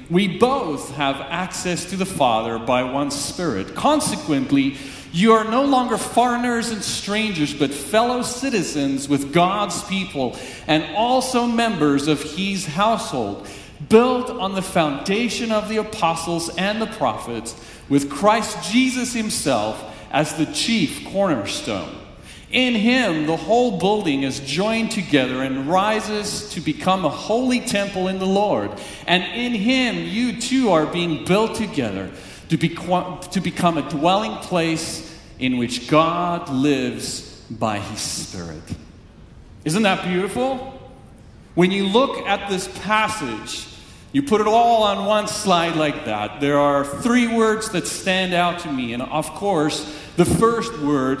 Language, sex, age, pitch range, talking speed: English, male, 40-59, 145-220 Hz, 145 wpm